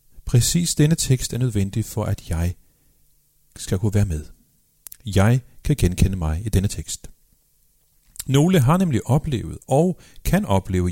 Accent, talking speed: native, 145 wpm